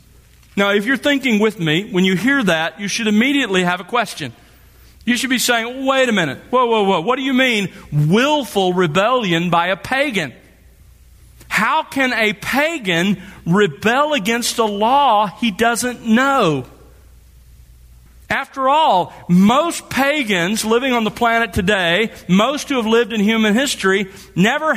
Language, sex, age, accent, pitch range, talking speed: English, male, 40-59, American, 160-240 Hz, 155 wpm